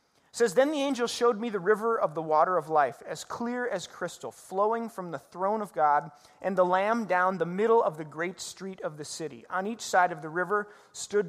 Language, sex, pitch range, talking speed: English, male, 155-195 Hz, 230 wpm